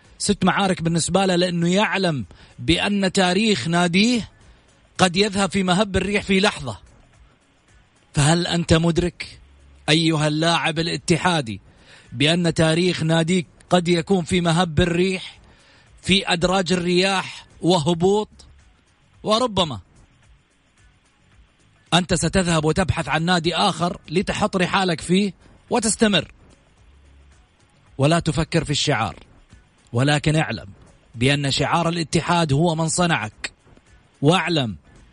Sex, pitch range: male, 120-180 Hz